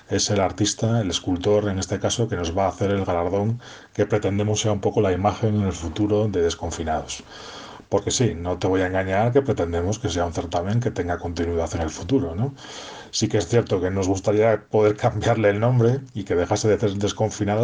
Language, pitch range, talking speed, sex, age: Spanish, 90-115 Hz, 220 wpm, male, 30-49